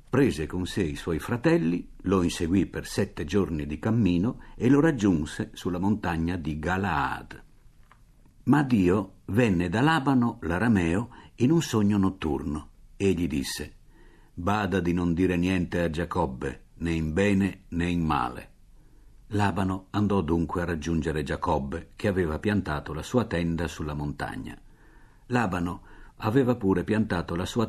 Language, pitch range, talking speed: Italian, 85-105 Hz, 145 wpm